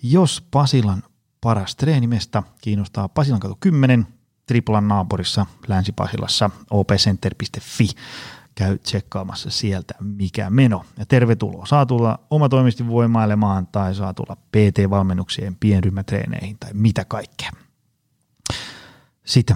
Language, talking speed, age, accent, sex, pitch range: Finnish, 90 wpm, 30-49, native, male, 105-125 Hz